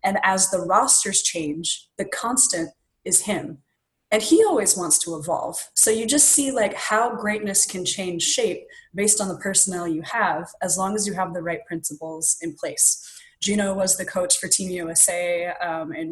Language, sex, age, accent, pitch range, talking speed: English, female, 20-39, American, 170-220 Hz, 185 wpm